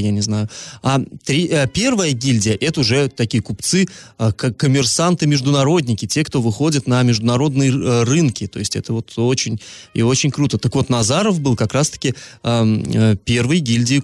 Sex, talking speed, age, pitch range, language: male, 140 wpm, 20-39, 110-145 Hz, Russian